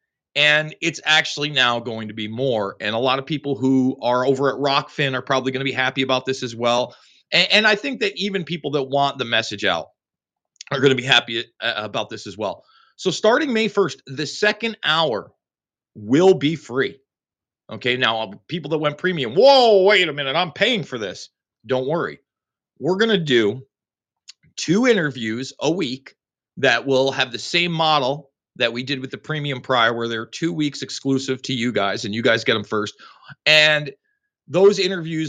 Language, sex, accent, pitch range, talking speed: English, male, American, 125-165 Hz, 185 wpm